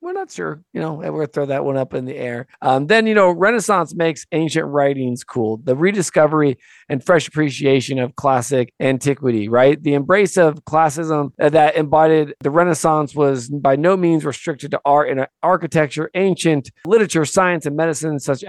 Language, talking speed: English, 180 wpm